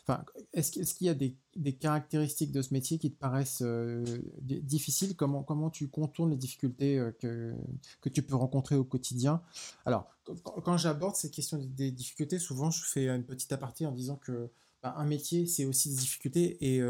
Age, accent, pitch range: 20-39, French, 125-150 Hz